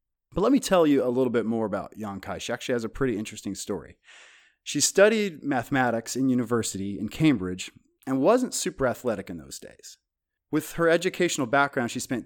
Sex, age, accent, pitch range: male, 30-49, American, 110-140 Hz